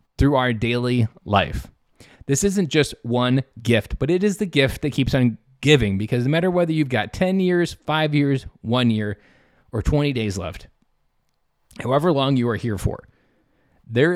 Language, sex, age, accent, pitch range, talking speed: English, male, 20-39, American, 115-150 Hz, 175 wpm